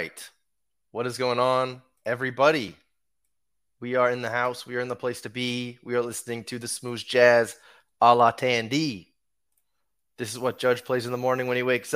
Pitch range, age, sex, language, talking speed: 100-130 Hz, 20-39, male, English, 190 wpm